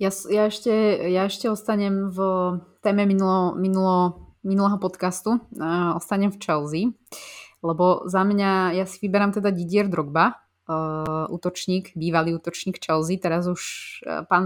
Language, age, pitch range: Slovak, 20-39, 165-195 Hz